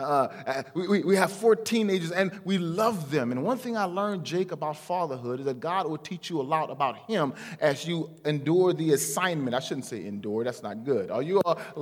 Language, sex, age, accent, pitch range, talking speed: English, male, 30-49, American, 145-185 Hz, 225 wpm